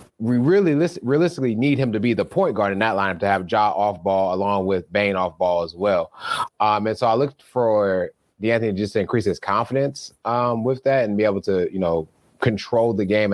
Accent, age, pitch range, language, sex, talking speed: American, 30-49, 95-115 Hz, English, male, 220 wpm